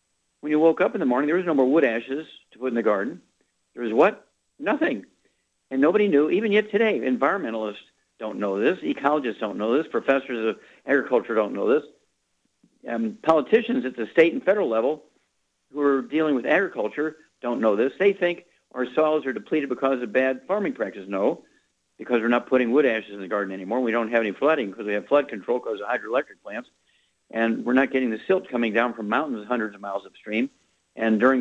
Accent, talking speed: American, 210 wpm